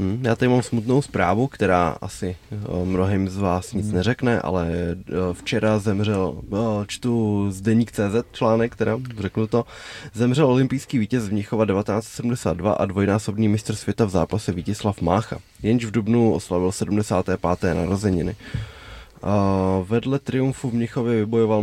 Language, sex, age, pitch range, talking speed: Czech, male, 20-39, 95-110 Hz, 140 wpm